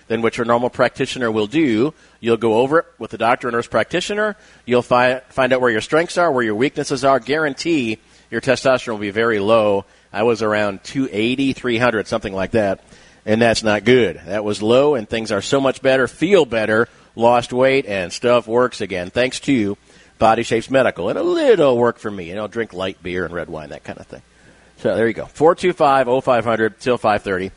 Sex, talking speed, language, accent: male, 200 wpm, English, American